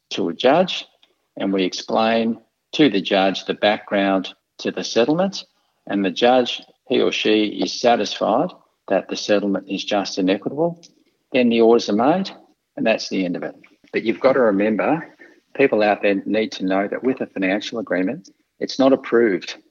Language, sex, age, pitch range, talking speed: English, male, 50-69, 100-120 Hz, 180 wpm